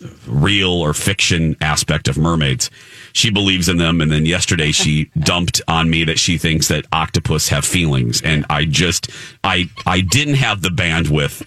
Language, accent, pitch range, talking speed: English, American, 95-135 Hz, 175 wpm